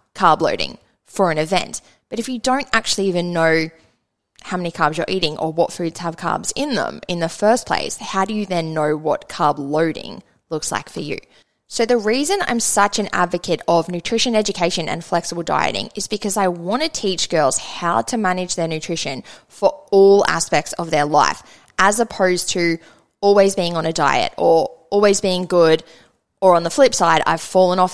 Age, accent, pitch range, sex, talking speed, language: 10-29, Australian, 165-200 Hz, female, 195 wpm, English